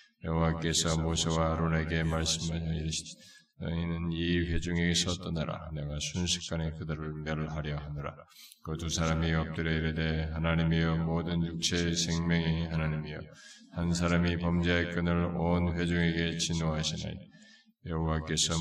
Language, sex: Korean, male